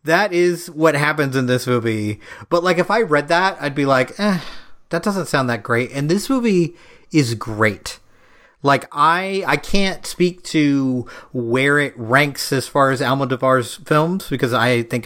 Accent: American